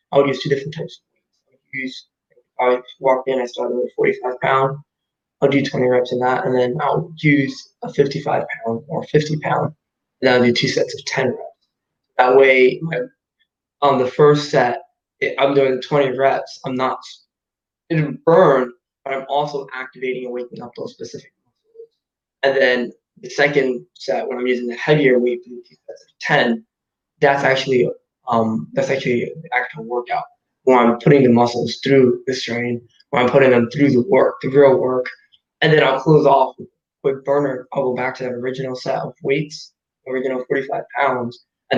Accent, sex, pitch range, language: American, male, 125-150 Hz, English